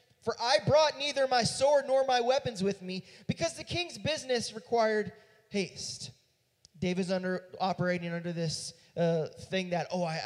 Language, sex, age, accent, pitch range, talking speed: English, male, 20-39, American, 155-220 Hz, 160 wpm